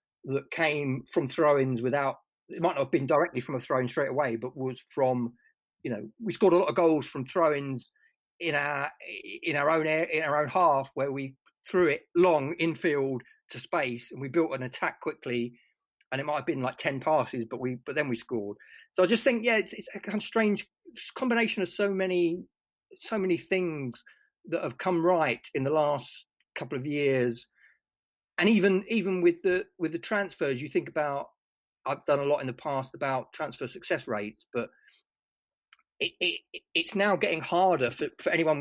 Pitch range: 130-195 Hz